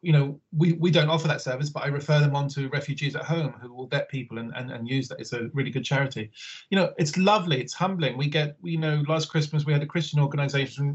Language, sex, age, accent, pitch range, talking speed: English, male, 30-49, British, 130-160 Hz, 265 wpm